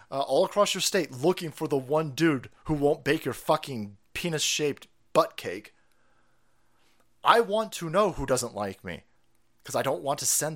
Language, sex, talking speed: English, male, 180 wpm